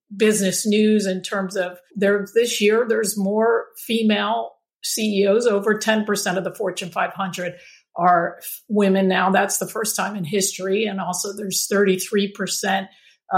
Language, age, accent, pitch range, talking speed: English, 50-69, American, 190-220 Hz, 140 wpm